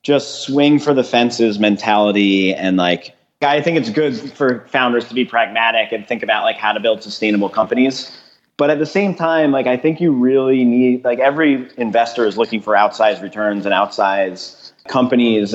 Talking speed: 185 wpm